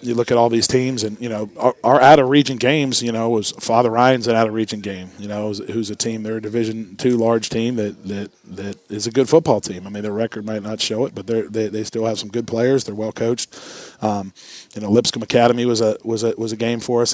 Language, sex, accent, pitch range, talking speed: English, male, American, 110-120 Hz, 270 wpm